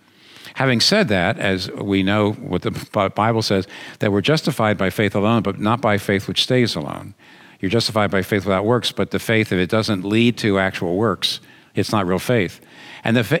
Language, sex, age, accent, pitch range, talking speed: English, male, 50-69, American, 90-115 Hz, 195 wpm